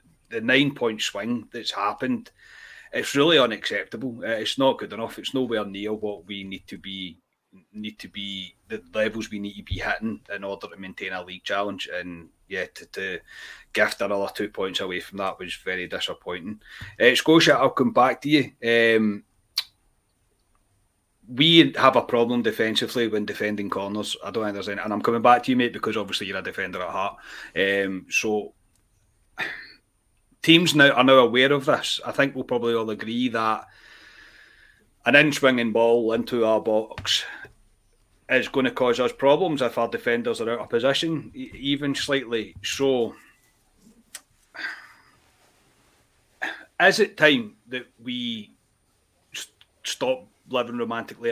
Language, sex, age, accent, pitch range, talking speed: English, male, 30-49, British, 105-130 Hz, 155 wpm